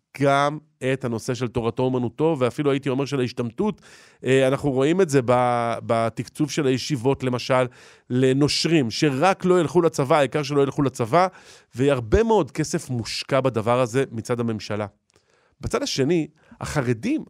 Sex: male